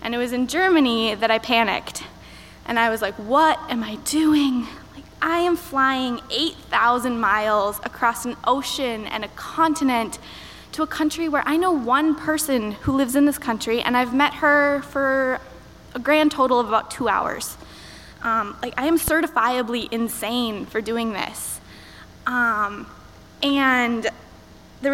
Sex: female